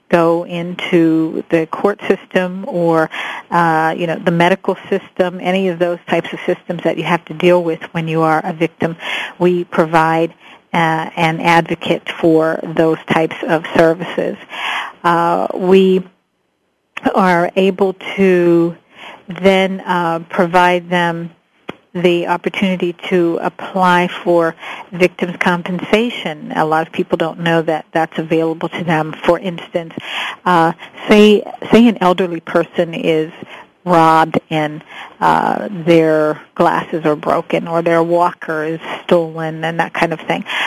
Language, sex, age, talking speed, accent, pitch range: English, female, 50-69, 135 wpm, American, 165-185 Hz